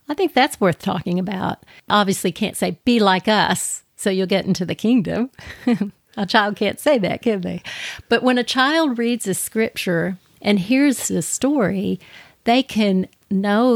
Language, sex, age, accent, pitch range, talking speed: English, female, 50-69, American, 185-240 Hz, 170 wpm